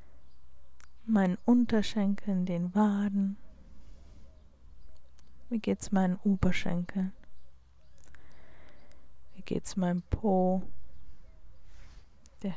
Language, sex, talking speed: German, female, 70 wpm